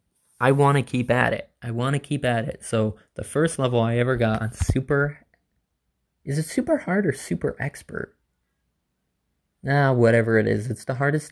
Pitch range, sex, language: 105-135 Hz, male, English